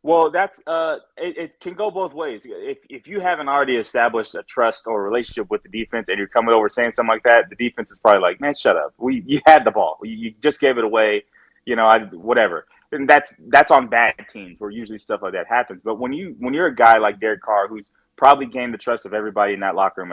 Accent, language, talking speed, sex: American, English, 255 wpm, male